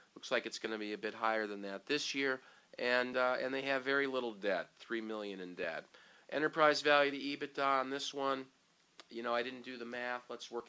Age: 40-59